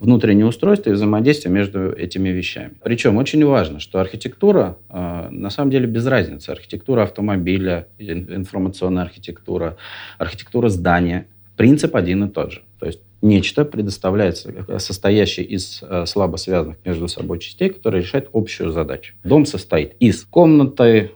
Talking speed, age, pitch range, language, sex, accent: 135 wpm, 40-59, 90-120 Hz, Russian, male, native